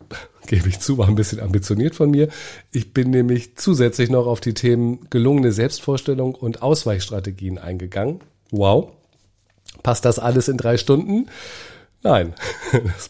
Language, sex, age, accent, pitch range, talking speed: German, male, 40-59, German, 95-130 Hz, 140 wpm